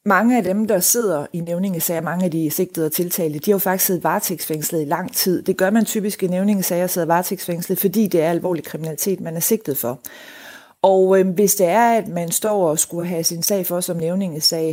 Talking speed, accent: 225 wpm, native